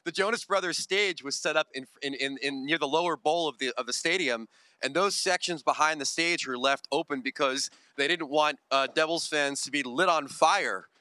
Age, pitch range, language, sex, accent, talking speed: 30-49, 135-165 Hz, English, male, American, 225 wpm